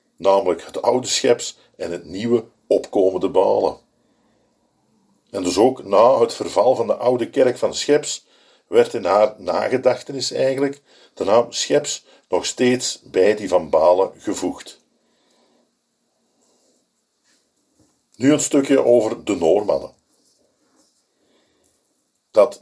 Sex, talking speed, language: male, 115 wpm, Dutch